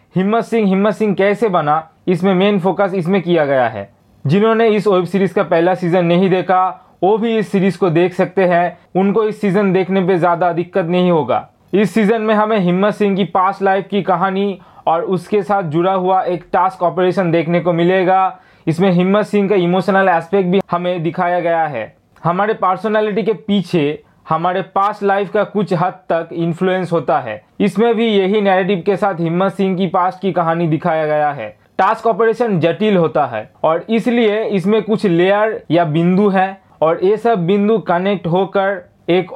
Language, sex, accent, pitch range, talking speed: Hindi, male, native, 175-205 Hz, 185 wpm